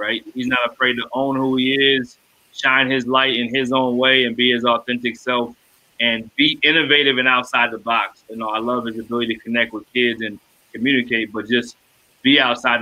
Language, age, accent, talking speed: English, 30-49, American, 205 wpm